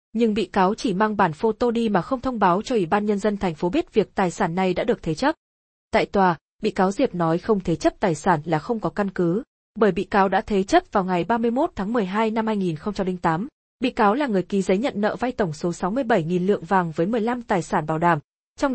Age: 20-39